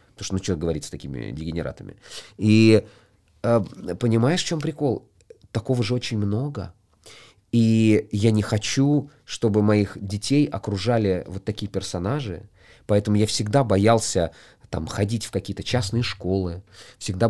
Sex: male